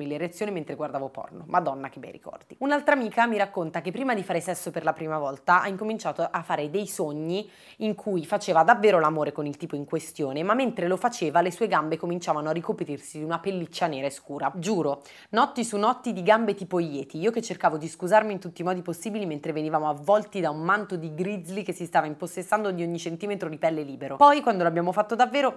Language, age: Italian, 30-49